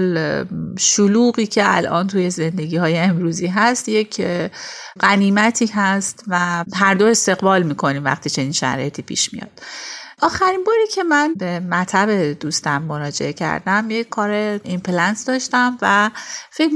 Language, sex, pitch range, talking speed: Persian, female, 165-210 Hz, 130 wpm